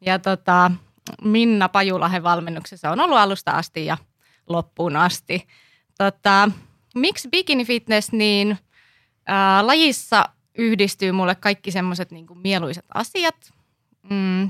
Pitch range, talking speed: 175-205 Hz, 100 wpm